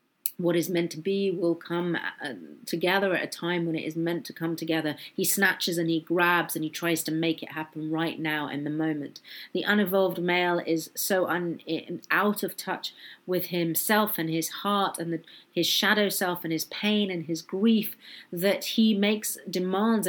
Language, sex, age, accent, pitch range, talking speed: English, female, 40-59, British, 165-195 Hz, 185 wpm